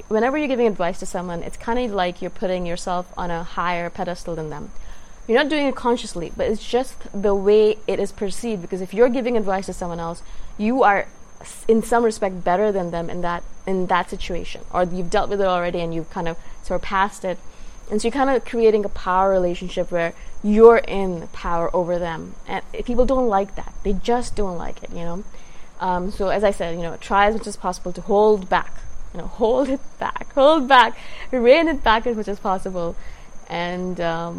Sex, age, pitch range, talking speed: female, 20-39, 180-235 Hz, 215 wpm